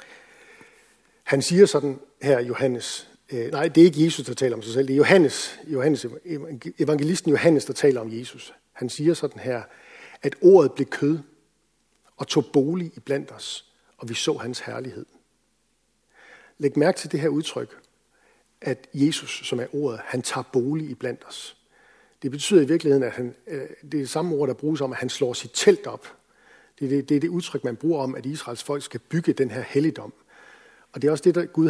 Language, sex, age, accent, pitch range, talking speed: Danish, male, 50-69, native, 130-160 Hz, 195 wpm